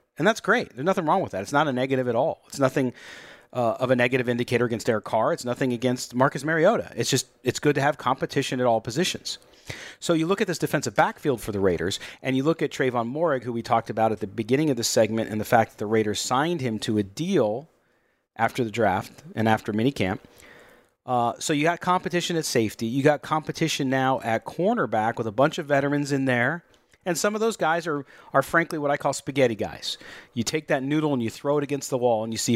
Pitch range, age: 120-160 Hz, 40-59